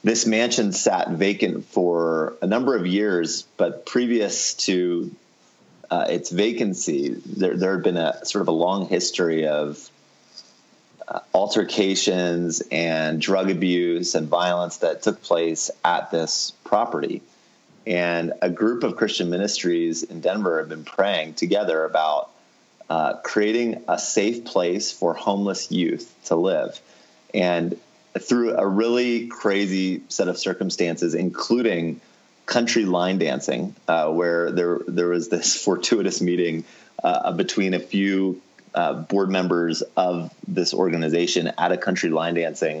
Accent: American